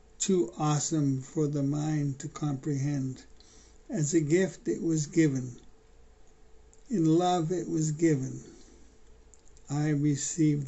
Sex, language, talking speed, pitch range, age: male, English, 110 wpm, 145-170 Hz, 60-79